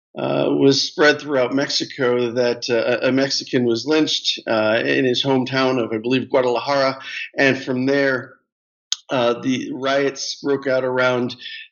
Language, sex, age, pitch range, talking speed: English, male, 50-69, 120-145 Hz, 145 wpm